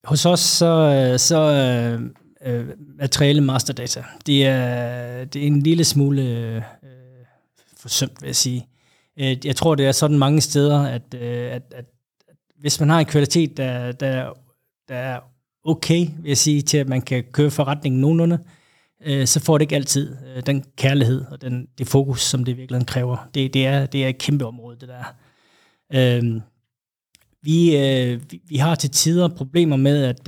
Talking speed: 185 wpm